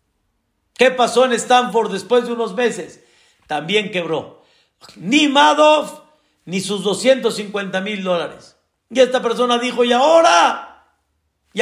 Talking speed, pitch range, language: 125 wpm, 185-255 Hz, Spanish